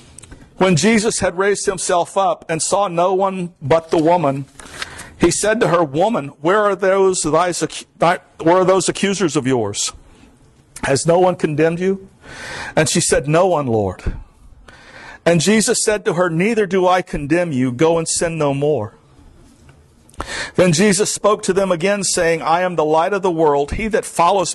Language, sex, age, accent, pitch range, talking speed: English, male, 50-69, American, 140-190 Hz, 175 wpm